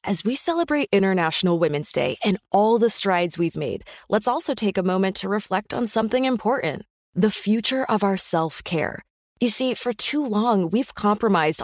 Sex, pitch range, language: female, 185-240 Hz, English